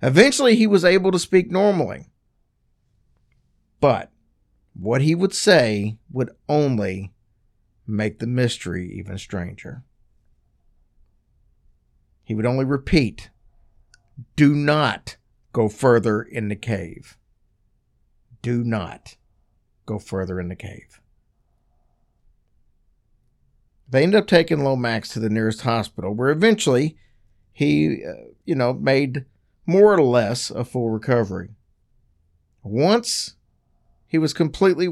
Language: English